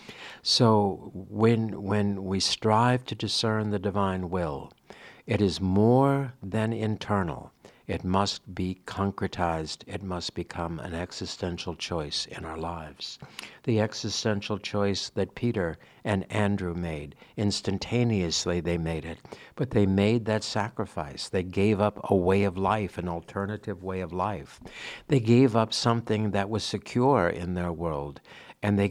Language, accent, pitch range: English, American, 85-105 Hz